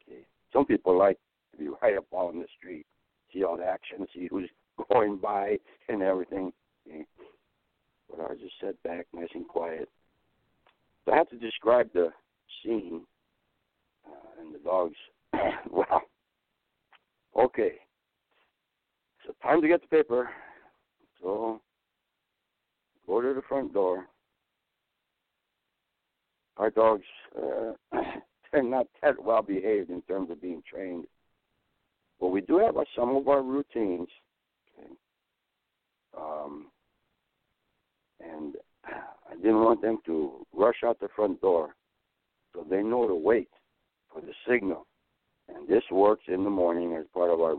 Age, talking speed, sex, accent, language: 60-79, 130 wpm, male, American, English